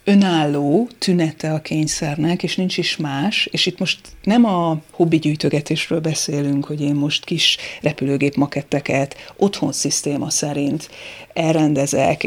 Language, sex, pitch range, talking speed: Hungarian, female, 150-175 Hz, 125 wpm